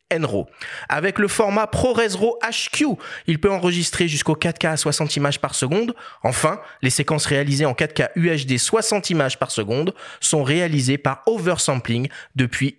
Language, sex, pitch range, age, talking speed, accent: French, male, 130-200 Hz, 30-49, 155 wpm, French